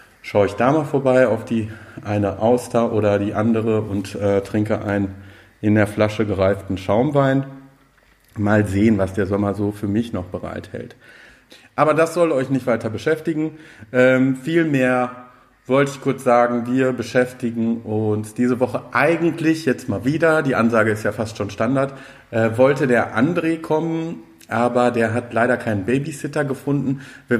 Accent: German